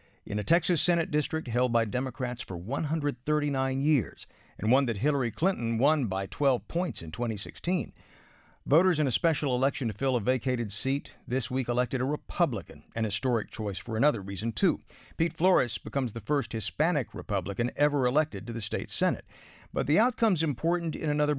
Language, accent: English, American